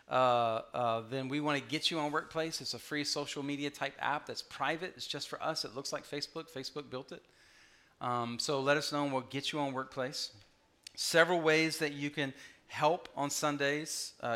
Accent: American